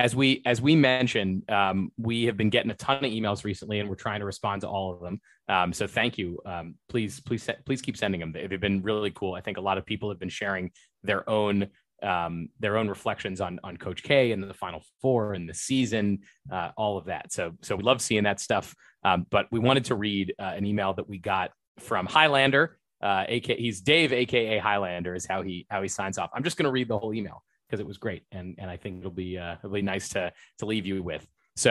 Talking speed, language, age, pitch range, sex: 250 wpm, English, 30-49, 95-120 Hz, male